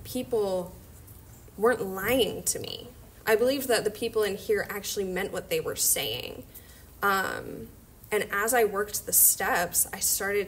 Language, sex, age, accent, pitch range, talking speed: English, female, 10-29, American, 180-235 Hz, 155 wpm